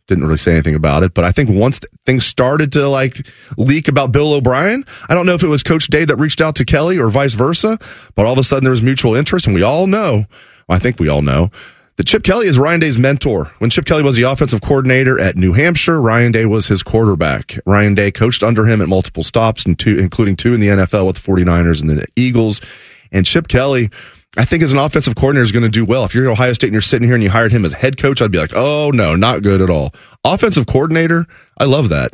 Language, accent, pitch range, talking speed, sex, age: English, American, 90-130 Hz, 260 wpm, male, 30-49